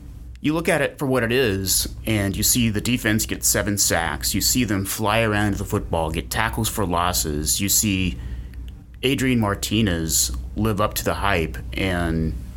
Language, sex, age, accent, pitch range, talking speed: English, male, 30-49, American, 80-115 Hz, 175 wpm